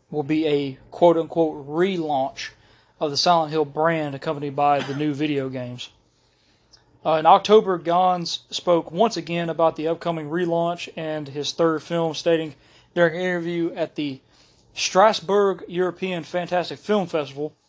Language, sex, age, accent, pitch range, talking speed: English, male, 30-49, American, 145-170 Hz, 145 wpm